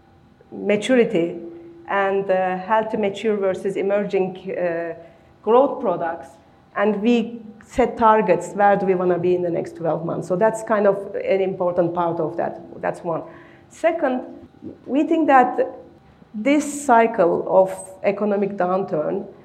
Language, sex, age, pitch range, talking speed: English, female, 40-59, 195-255 Hz, 140 wpm